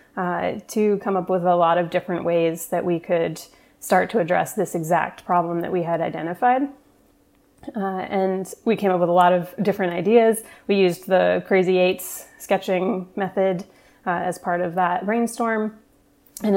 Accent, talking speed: American, 175 wpm